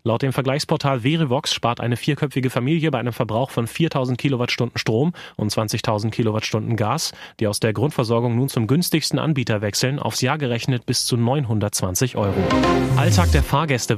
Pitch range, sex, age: 115-140 Hz, male, 30-49